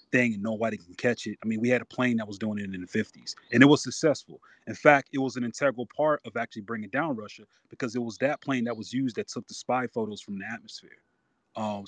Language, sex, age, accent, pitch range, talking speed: English, male, 30-49, American, 110-130 Hz, 265 wpm